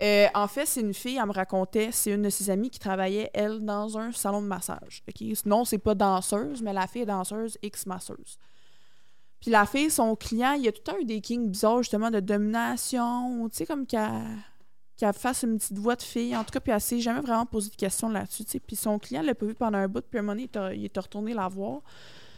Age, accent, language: 20-39, Canadian, French